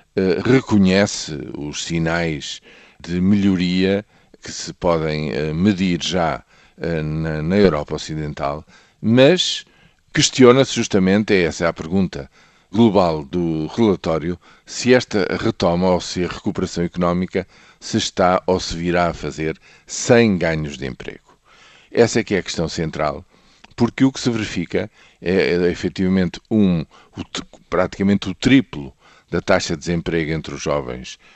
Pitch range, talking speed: 80-100 Hz, 125 wpm